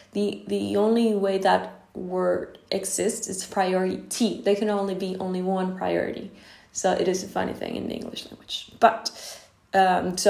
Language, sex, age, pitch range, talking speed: English, female, 20-39, 190-240 Hz, 170 wpm